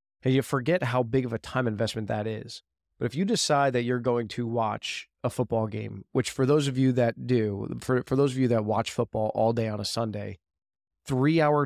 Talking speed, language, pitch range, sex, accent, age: 225 wpm, English, 105-125 Hz, male, American, 20-39